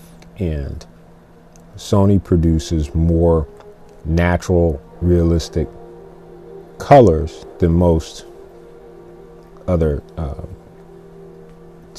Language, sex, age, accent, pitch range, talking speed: English, male, 40-59, American, 80-85 Hz, 55 wpm